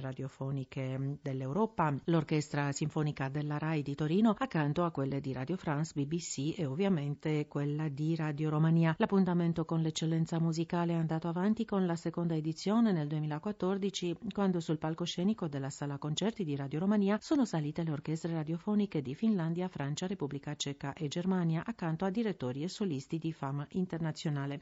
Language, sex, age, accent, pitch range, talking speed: Italian, female, 40-59, native, 145-175 Hz, 155 wpm